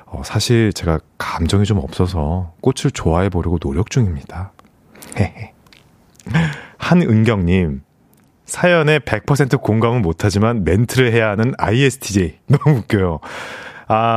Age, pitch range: 30-49, 90-130 Hz